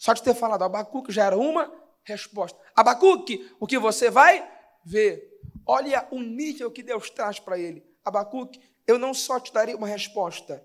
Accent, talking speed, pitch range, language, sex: Brazilian, 175 wpm, 195-265 Hz, Portuguese, male